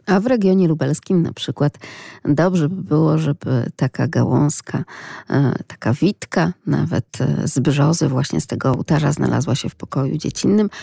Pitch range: 145-190 Hz